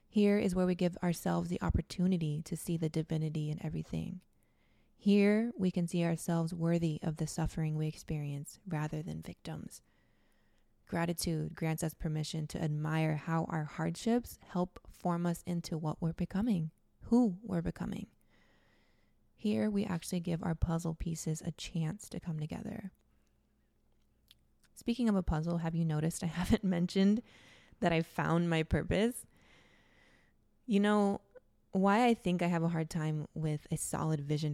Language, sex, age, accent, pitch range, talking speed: English, female, 20-39, American, 155-185 Hz, 155 wpm